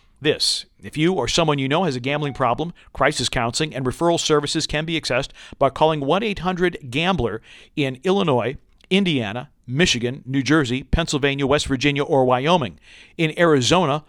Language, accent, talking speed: English, American, 150 wpm